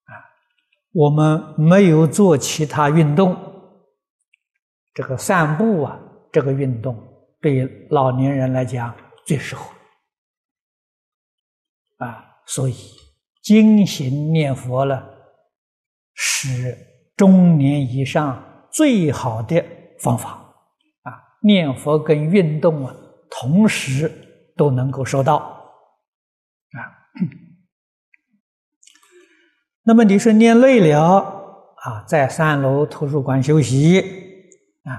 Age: 60-79